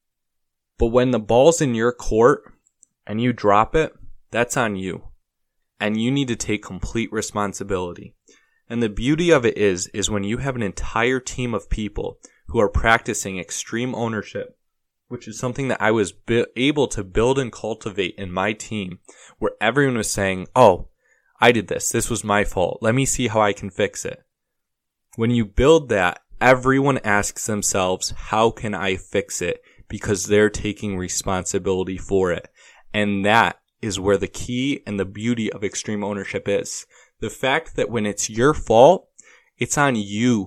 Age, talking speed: 20-39, 170 wpm